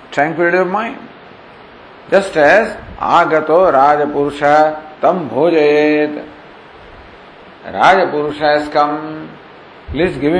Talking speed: 85 wpm